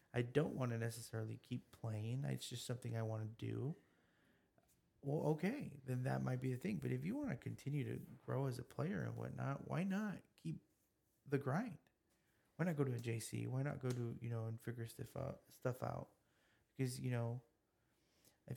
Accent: American